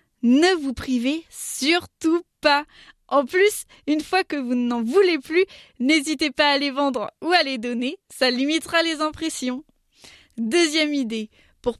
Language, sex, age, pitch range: French, female, 20-39, 260-330 Hz